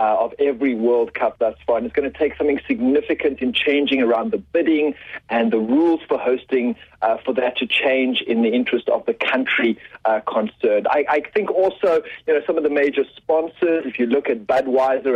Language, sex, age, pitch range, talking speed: English, male, 40-59, 125-165 Hz, 205 wpm